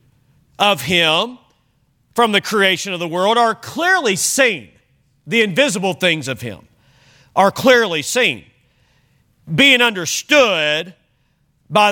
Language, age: English, 40-59